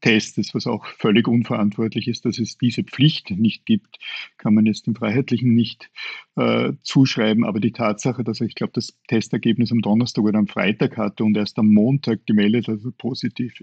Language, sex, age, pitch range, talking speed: German, male, 50-69, 110-125 Hz, 190 wpm